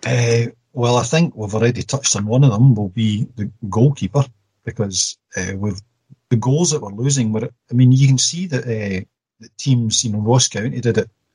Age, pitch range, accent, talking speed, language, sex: 40-59, 110-130 Hz, British, 205 wpm, English, male